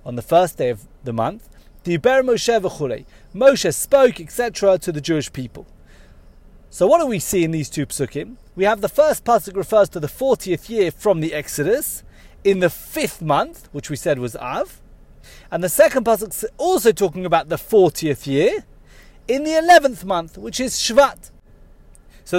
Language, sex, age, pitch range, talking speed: English, male, 30-49, 165-260 Hz, 180 wpm